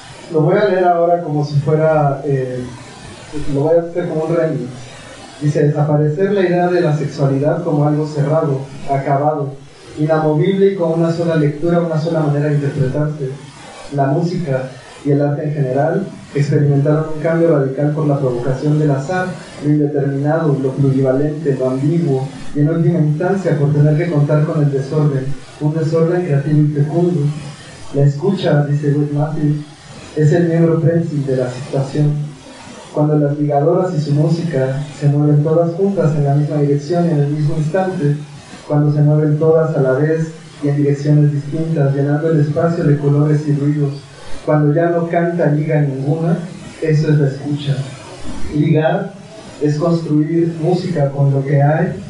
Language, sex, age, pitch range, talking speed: Spanish, male, 30-49, 140-165 Hz, 165 wpm